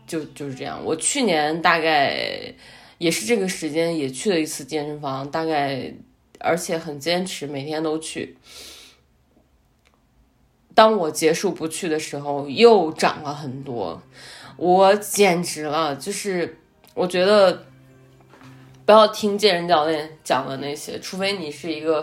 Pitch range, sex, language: 150-190 Hz, female, Chinese